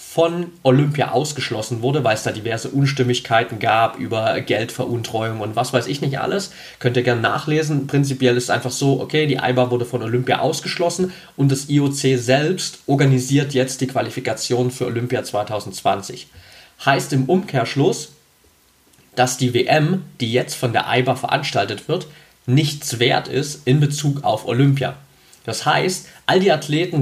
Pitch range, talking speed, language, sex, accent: 125-155 Hz, 155 wpm, German, male, German